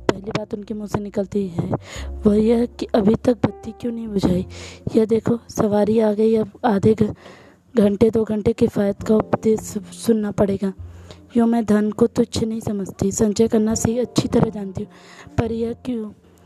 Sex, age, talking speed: female, 20-39, 180 wpm